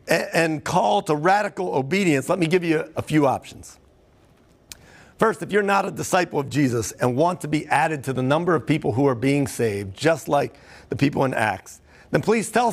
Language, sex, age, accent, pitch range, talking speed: English, male, 50-69, American, 140-200 Hz, 205 wpm